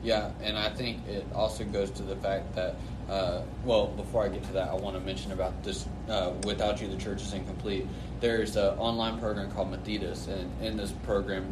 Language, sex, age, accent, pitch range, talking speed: English, male, 20-39, American, 100-110 Hz, 215 wpm